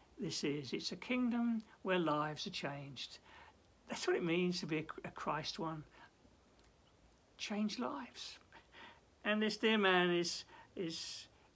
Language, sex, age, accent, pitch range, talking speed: English, male, 60-79, British, 155-235 Hz, 140 wpm